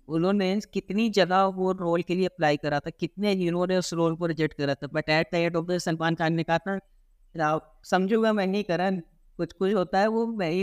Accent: native